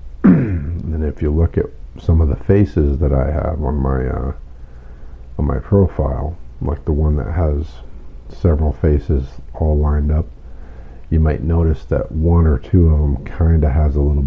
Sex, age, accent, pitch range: male, 50-69, American, 65-80 Hz